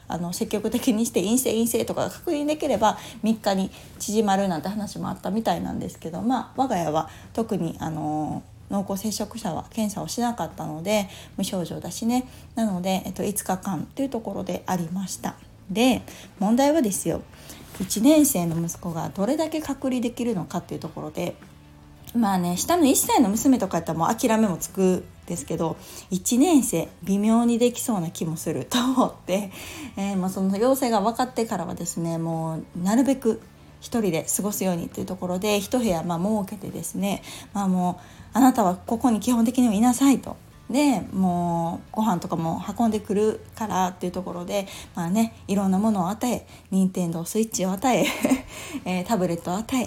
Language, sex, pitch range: Japanese, female, 180-235 Hz